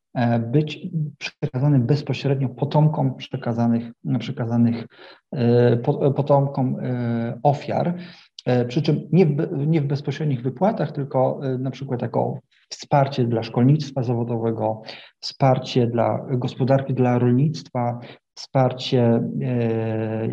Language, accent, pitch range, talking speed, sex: Polish, native, 115-140 Hz, 85 wpm, male